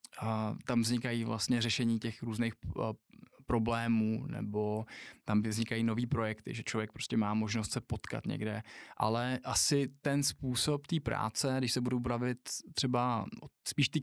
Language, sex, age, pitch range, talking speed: English, male, 20-39, 115-130 Hz, 150 wpm